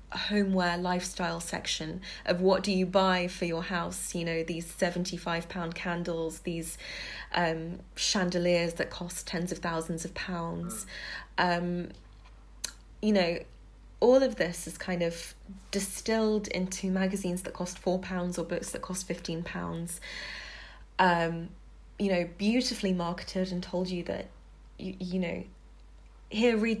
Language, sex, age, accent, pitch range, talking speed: English, female, 20-39, British, 170-195 Hz, 140 wpm